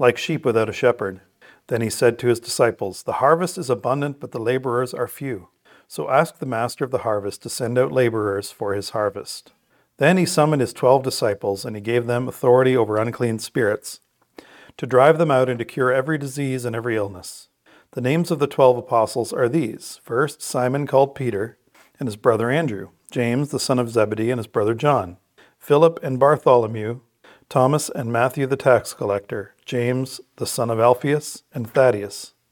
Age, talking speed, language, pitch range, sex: 40-59, 185 wpm, English, 115-135 Hz, male